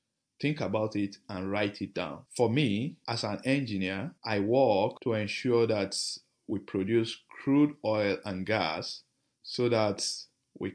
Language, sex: English, male